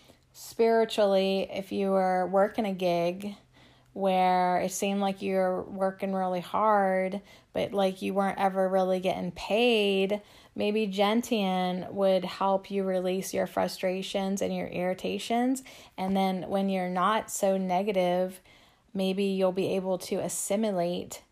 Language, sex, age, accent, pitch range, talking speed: English, female, 20-39, American, 180-210 Hz, 130 wpm